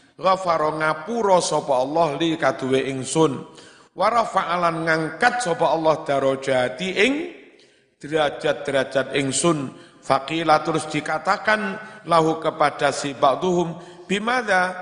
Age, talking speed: 50-69, 95 wpm